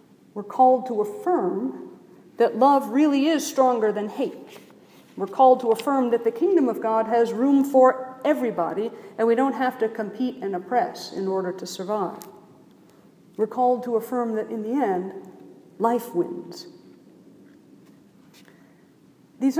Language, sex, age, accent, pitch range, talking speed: English, female, 50-69, American, 225-280 Hz, 145 wpm